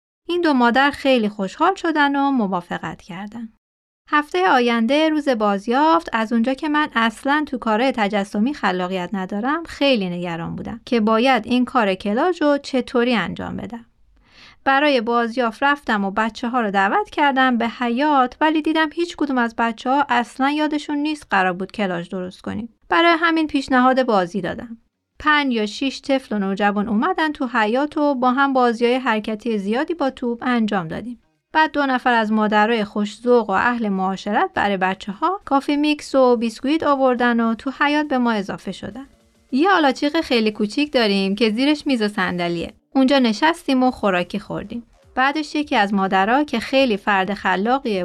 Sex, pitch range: female, 210-285 Hz